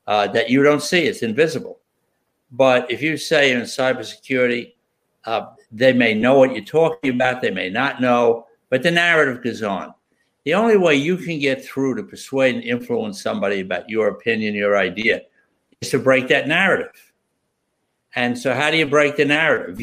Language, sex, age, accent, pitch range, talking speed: English, male, 60-79, American, 125-170 Hz, 180 wpm